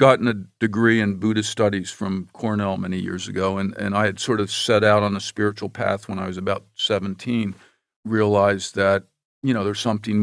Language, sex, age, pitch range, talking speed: English, male, 50-69, 100-115 Hz, 200 wpm